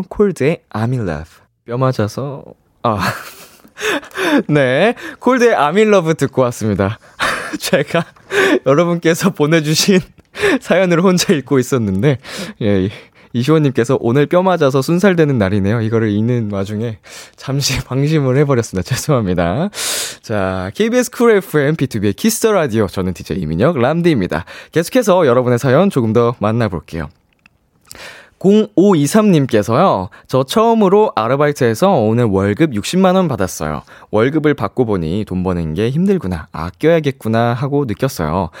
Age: 20-39